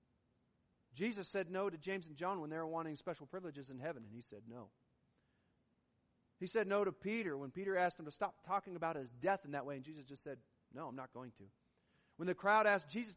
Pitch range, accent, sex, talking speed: 130-180 Hz, American, male, 230 wpm